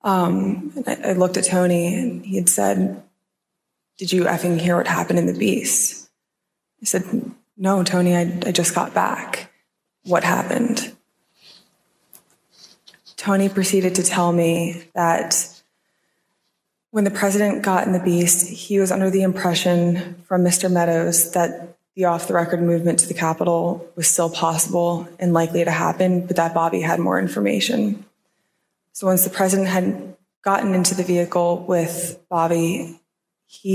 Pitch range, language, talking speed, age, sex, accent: 170-190 Hz, English, 150 wpm, 20-39, female, American